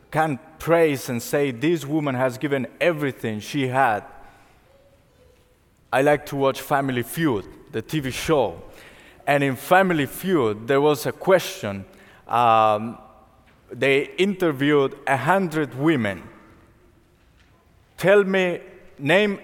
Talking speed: 115 wpm